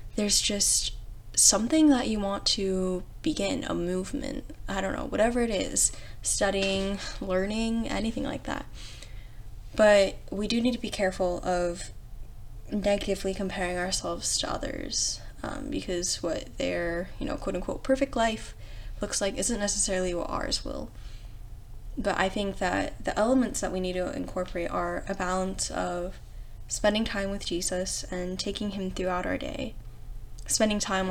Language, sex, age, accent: English, female, 10-29, American